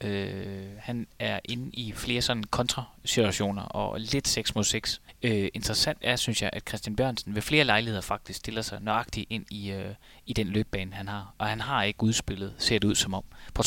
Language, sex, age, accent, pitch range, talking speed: Danish, male, 20-39, native, 100-115 Hz, 205 wpm